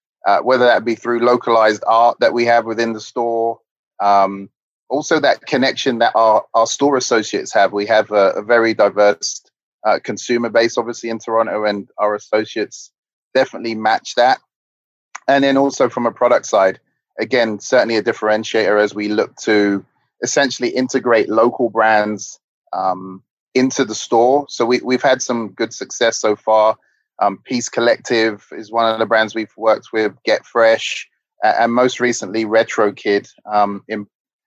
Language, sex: English, male